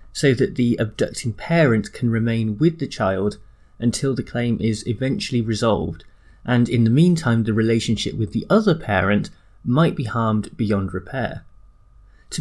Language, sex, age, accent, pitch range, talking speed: English, male, 30-49, British, 105-135 Hz, 155 wpm